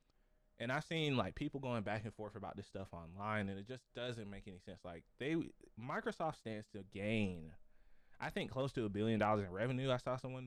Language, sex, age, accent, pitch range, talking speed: English, male, 20-39, American, 95-120 Hz, 220 wpm